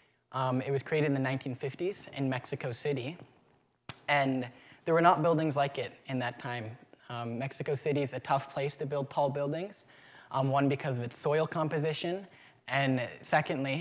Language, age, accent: English, 10-29, American